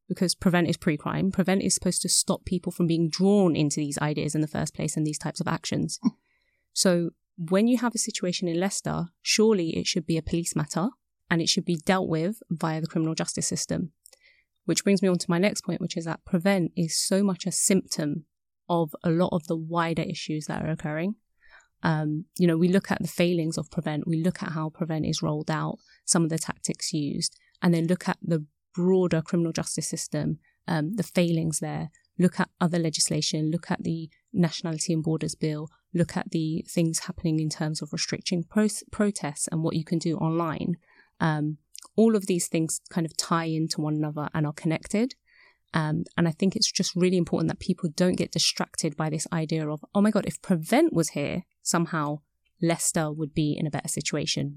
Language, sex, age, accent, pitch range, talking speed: English, female, 20-39, British, 160-185 Hz, 205 wpm